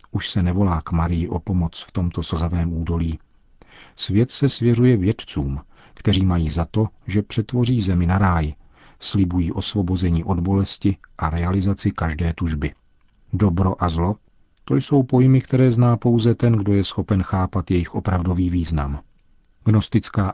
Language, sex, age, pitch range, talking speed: Czech, male, 50-69, 85-105 Hz, 150 wpm